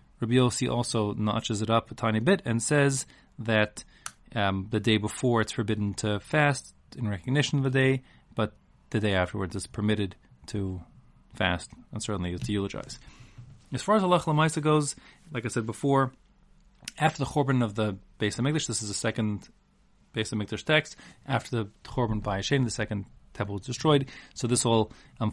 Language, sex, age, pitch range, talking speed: English, male, 30-49, 100-125 Hz, 175 wpm